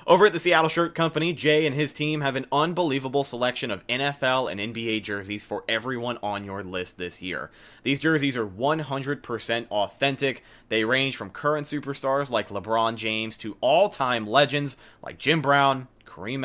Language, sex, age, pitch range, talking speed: English, male, 30-49, 115-150 Hz, 170 wpm